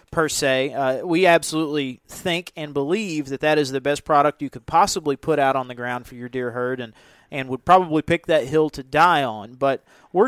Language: English